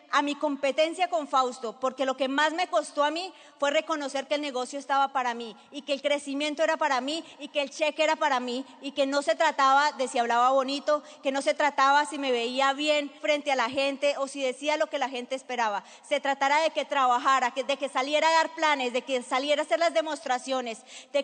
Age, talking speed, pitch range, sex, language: 30-49, 235 wpm, 265-300 Hz, female, Spanish